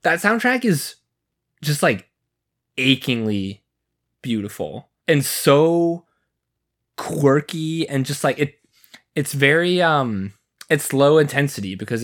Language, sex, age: English, male, 20-39